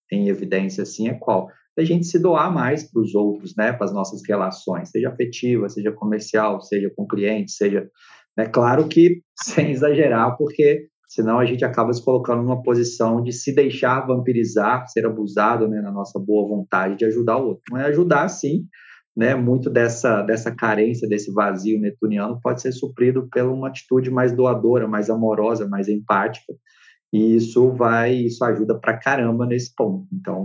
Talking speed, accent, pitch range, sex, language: 170 wpm, Brazilian, 110-130 Hz, male, Portuguese